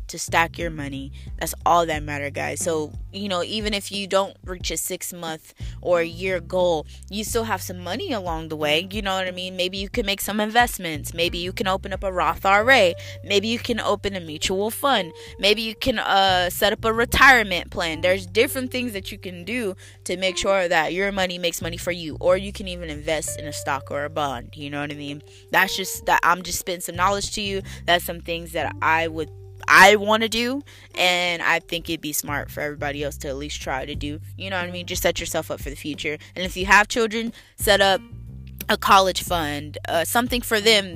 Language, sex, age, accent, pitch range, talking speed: English, female, 20-39, American, 150-205 Hz, 235 wpm